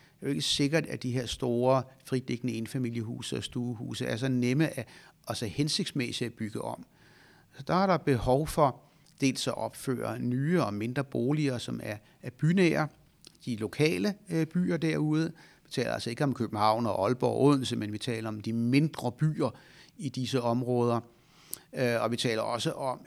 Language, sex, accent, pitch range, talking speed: Danish, male, native, 120-150 Hz, 170 wpm